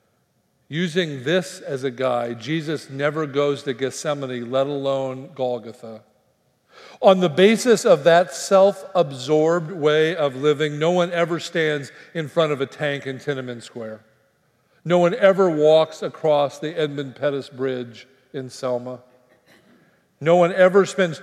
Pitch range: 130-175 Hz